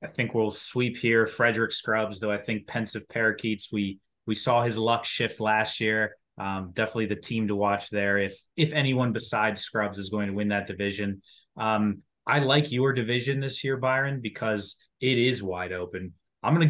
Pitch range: 100-120 Hz